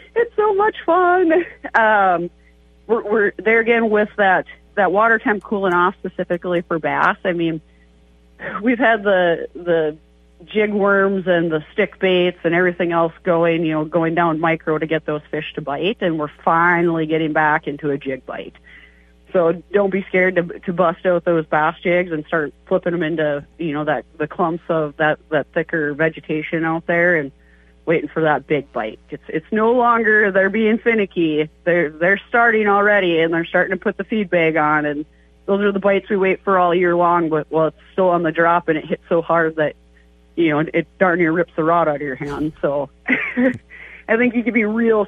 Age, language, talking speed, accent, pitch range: 40-59, English, 200 wpm, American, 155-195 Hz